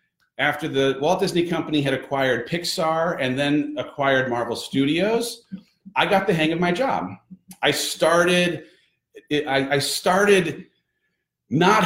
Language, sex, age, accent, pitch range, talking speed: English, male, 40-59, American, 140-175 Hz, 135 wpm